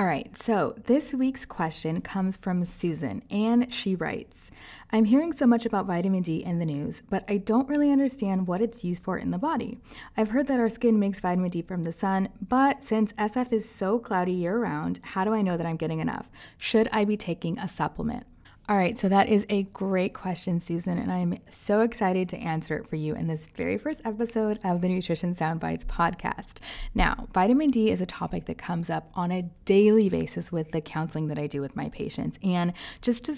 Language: English